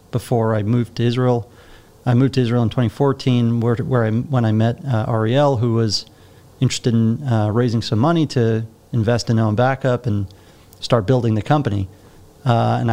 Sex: male